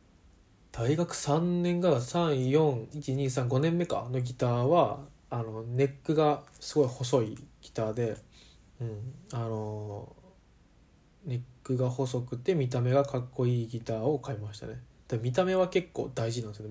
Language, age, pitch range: Japanese, 20-39, 115-140 Hz